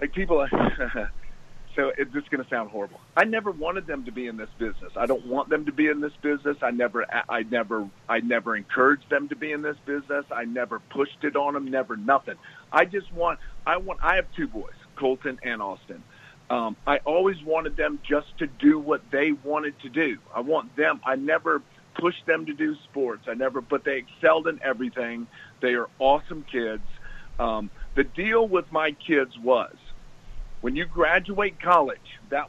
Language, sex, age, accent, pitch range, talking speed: English, male, 50-69, American, 130-165 Hz, 195 wpm